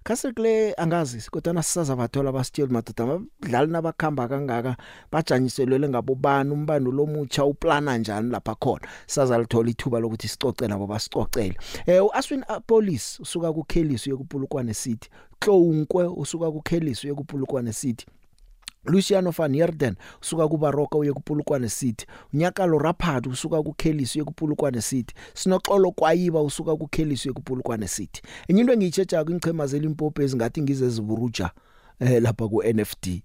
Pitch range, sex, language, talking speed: 115-160 Hz, male, English, 125 wpm